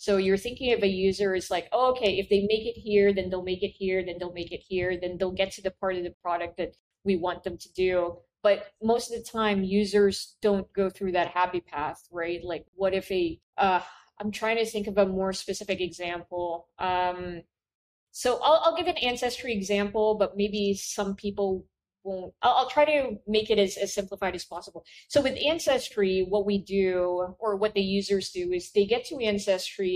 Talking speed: 210 wpm